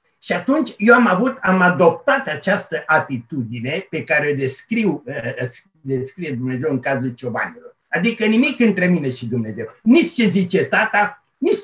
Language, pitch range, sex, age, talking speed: Romanian, 135-230 Hz, male, 60-79, 150 wpm